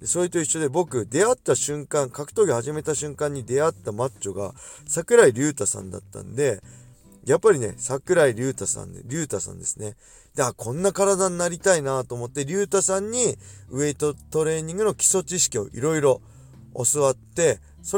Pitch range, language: 110-170 Hz, Japanese